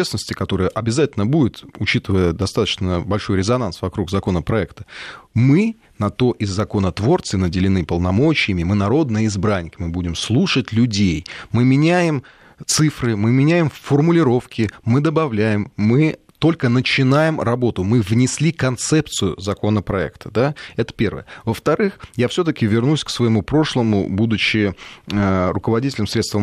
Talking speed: 120 wpm